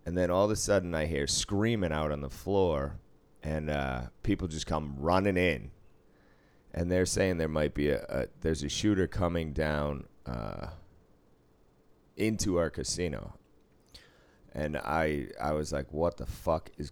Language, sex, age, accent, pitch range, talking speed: English, male, 30-49, American, 70-95 Hz, 165 wpm